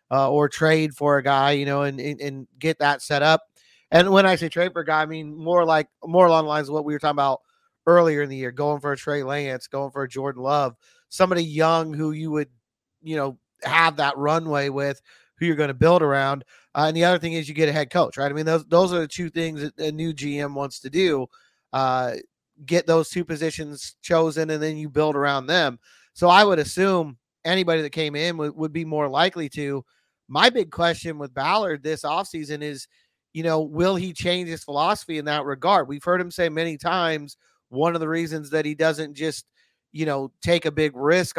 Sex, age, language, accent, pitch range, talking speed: male, 30-49, English, American, 145-165 Hz, 230 wpm